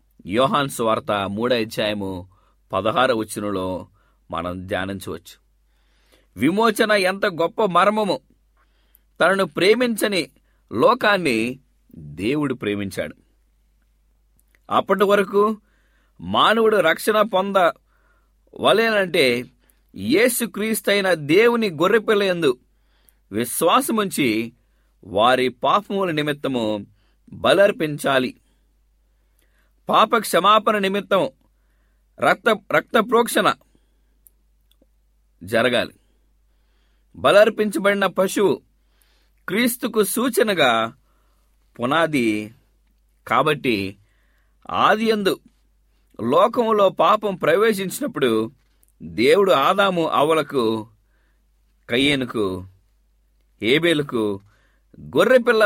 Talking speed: 60 wpm